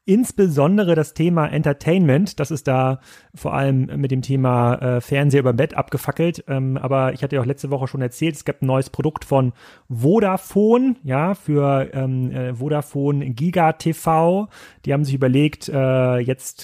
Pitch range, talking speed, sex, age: 130-150 Hz, 150 wpm, male, 30-49